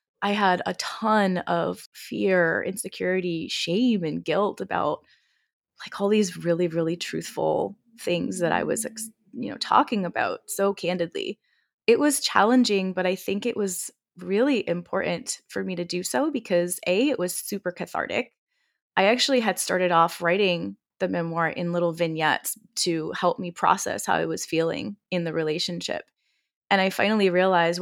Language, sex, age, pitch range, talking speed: English, female, 20-39, 170-220 Hz, 160 wpm